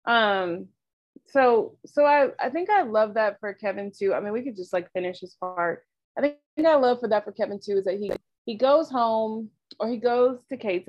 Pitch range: 185-225 Hz